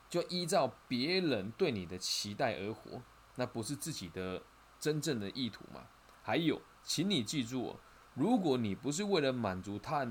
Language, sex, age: Chinese, male, 20-39